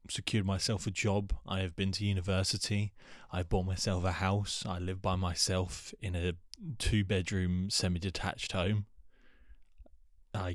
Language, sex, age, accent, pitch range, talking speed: English, male, 20-39, British, 90-110 Hz, 135 wpm